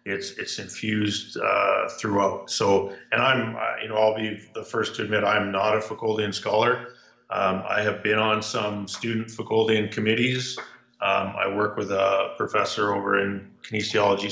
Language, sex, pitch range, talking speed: English, male, 105-125 Hz, 165 wpm